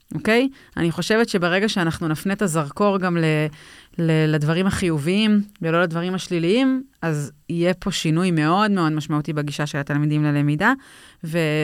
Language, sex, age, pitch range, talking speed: Hebrew, female, 30-49, 160-205 Hz, 150 wpm